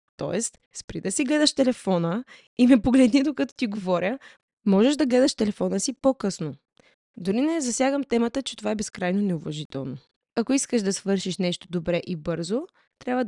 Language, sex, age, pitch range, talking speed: Bulgarian, female, 20-39, 180-255 Hz, 165 wpm